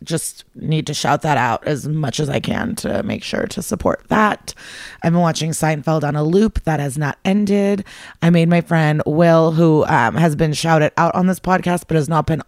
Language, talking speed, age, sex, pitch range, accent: English, 220 wpm, 30-49, female, 155-175 Hz, American